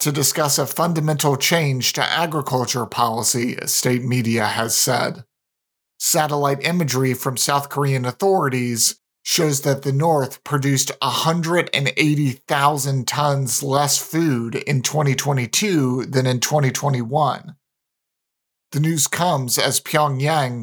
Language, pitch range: English, 130-150 Hz